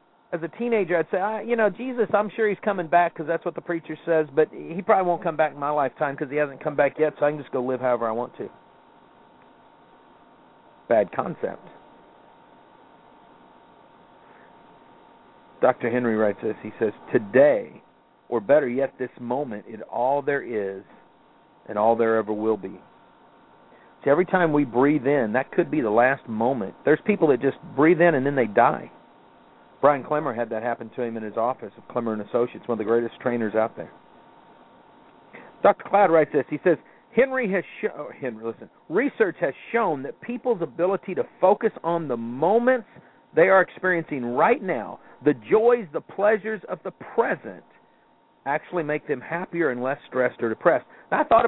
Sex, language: male, English